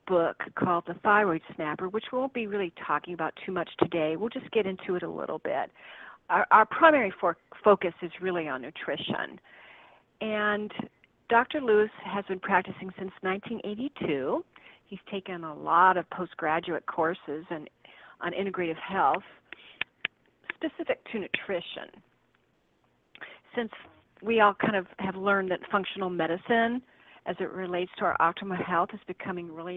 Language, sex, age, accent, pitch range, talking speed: English, female, 50-69, American, 175-210 Hz, 145 wpm